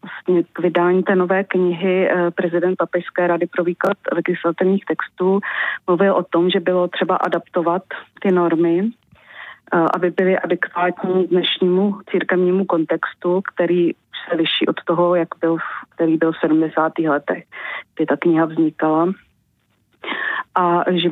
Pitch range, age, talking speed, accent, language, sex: 165-180 Hz, 30-49, 130 wpm, native, Czech, female